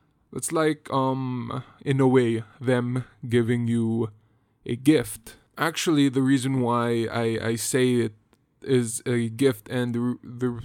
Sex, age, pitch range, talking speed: male, 20-39, 115-130 Hz, 140 wpm